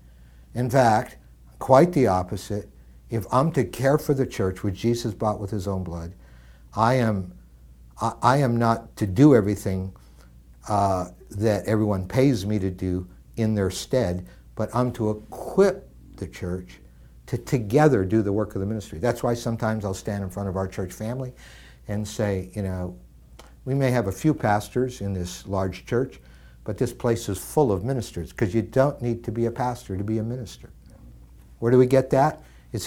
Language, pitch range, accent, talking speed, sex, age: English, 75-125 Hz, American, 185 wpm, male, 60-79